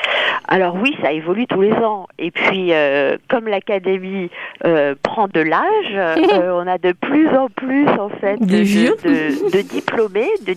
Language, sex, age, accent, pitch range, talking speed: French, female, 40-59, French, 165-210 Hz, 175 wpm